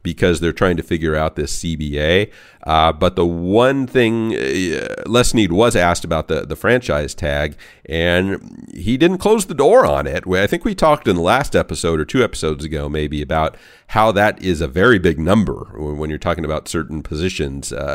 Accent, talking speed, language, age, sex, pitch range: American, 195 wpm, English, 40-59, male, 80-105 Hz